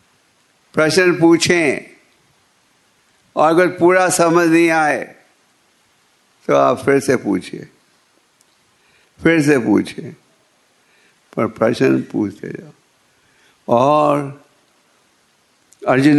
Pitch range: 115-150 Hz